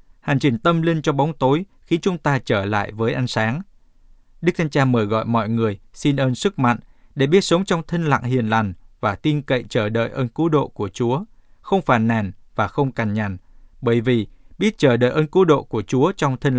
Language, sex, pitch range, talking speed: Vietnamese, male, 115-150 Hz, 230 wpm